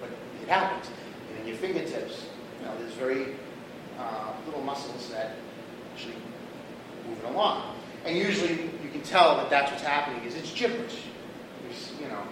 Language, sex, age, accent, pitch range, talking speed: English, male, 30-49, American, 120-165 Hz, 150 wpm